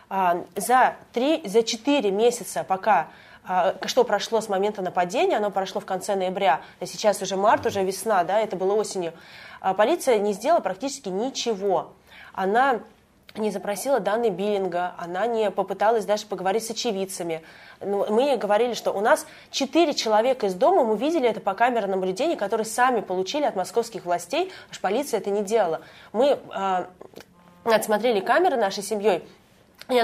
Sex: female